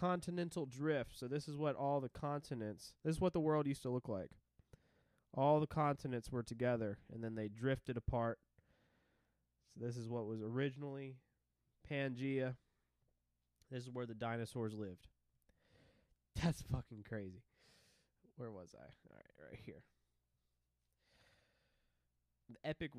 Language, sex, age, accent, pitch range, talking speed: English, male, 20-39, American, 105-155 Hz, 135 wpm